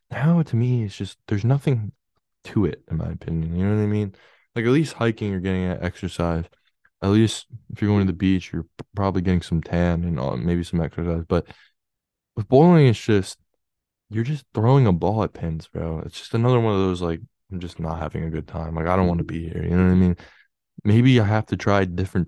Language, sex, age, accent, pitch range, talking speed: English, male, 20-39, American, 85-110 Hz, 230 wpm